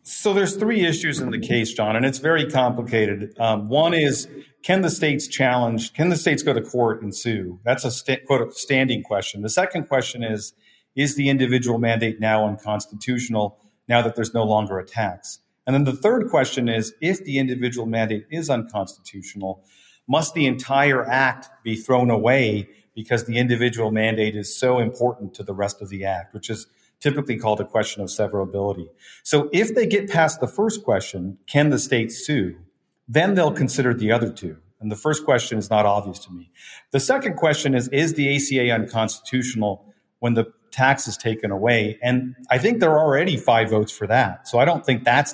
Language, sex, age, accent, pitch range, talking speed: English, male, 40-59, American, 110-140 Hz, 195 wpm